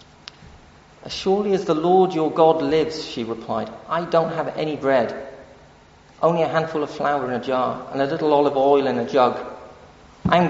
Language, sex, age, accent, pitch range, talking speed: English, male, 40-59, British, 125-160 Hz, 185 wpm